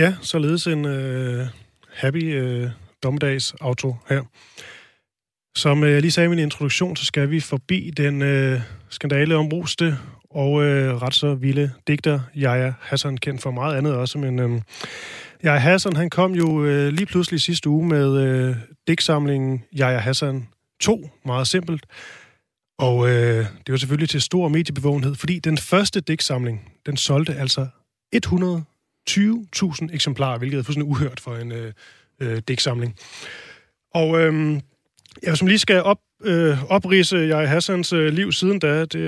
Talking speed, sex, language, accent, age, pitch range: 150 wpm, male, Danish, native, 30-49, 130-160 Hz